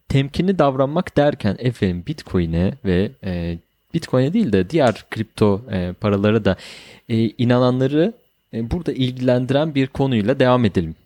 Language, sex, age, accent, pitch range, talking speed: Turkish, male, 30-49, native, 95-130 Hz, 130 wpm